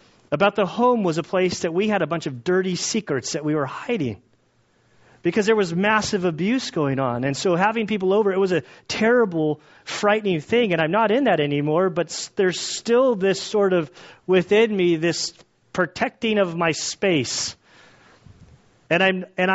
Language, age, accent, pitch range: English, 30-49, American, 140-205 Hz